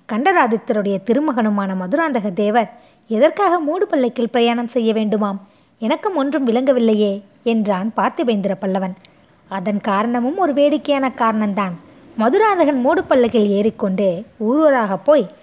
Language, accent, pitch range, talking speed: Tamil, native, 215-300 Hz, 110 wpm